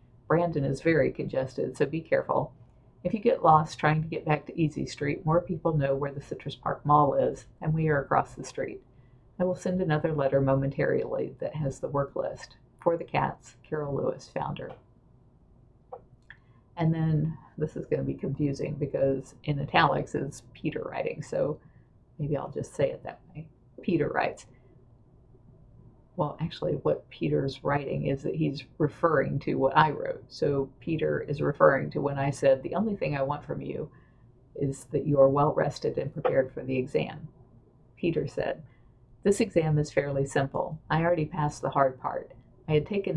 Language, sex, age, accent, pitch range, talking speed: English, female, 50-69, American, 130-155 Hz, 180 wpm